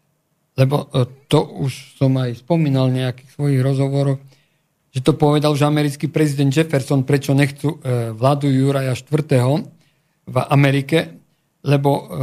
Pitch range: 130-155 Hz